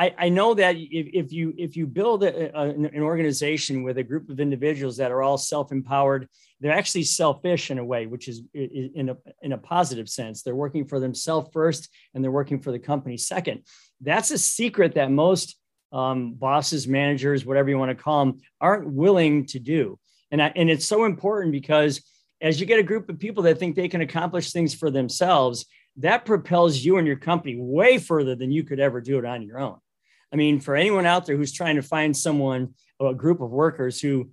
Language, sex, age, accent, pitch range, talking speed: English, male, 40-59, American, 135-165 Hz, 210 wpm